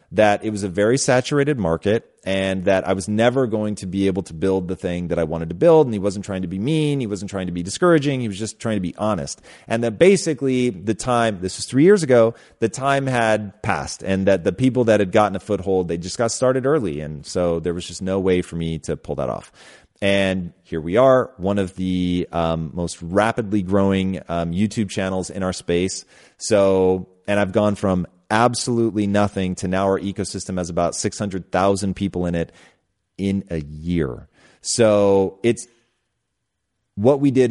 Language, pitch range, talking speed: English, 90-110 Hz, 205 wpm